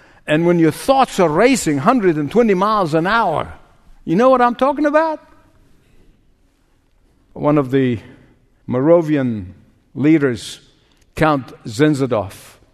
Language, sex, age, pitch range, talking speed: English, male, 60-79, 135-200 Hz, 110 wpm